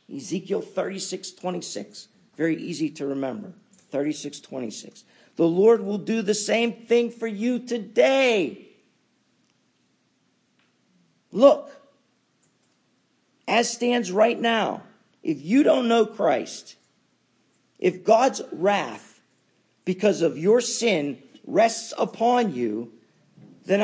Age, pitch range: 50-69, 185-230 Hz